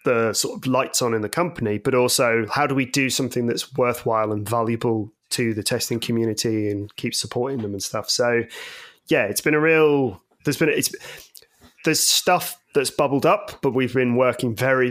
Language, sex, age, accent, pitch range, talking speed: English, male, 20-39, British, 115-135 Hz, 195 wpm